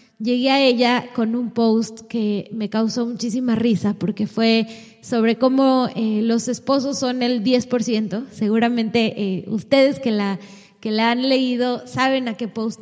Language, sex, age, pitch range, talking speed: Spanish, female, 20-39, 230-270 Hz, 155 wpm